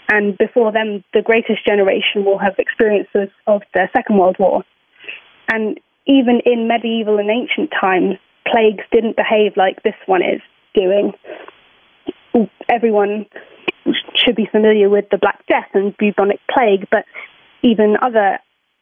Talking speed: 135 wpm